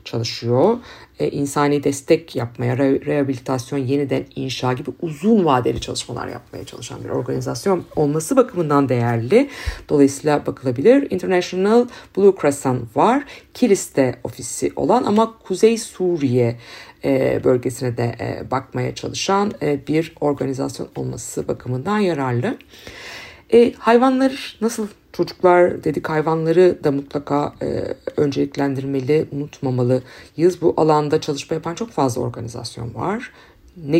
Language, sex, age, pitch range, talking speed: Turkish, female, 50-69, 135-180 Hz, 115 wpm